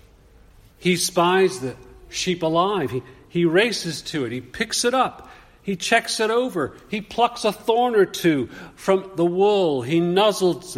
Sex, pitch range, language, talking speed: male, 120-175 Hz, English, 160 wpm